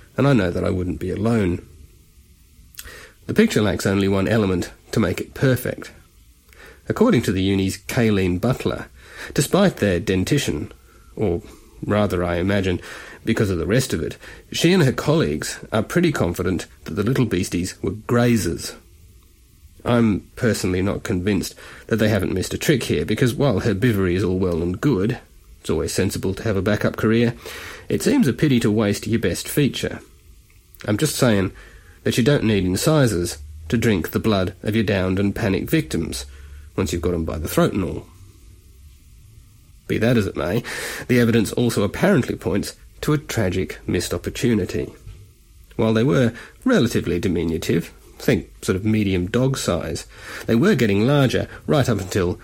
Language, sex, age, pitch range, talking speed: English, male, 30-49, 90-115 Hz, 170 wpm